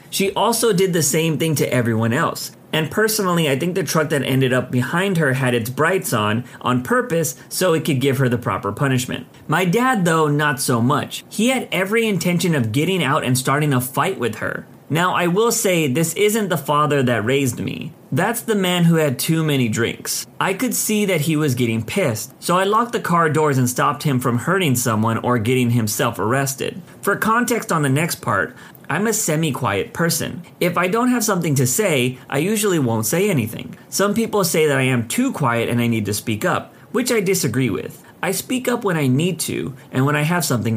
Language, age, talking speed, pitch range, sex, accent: English, 30-49, 220 wpm, 125-185 Hz, male, American